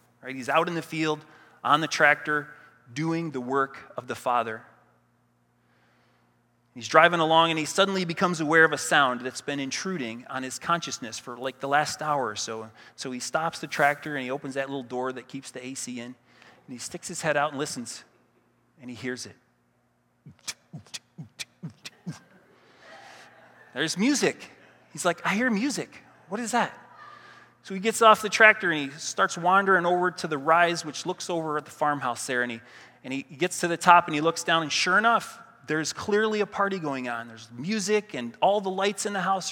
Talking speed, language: 190 wpm, English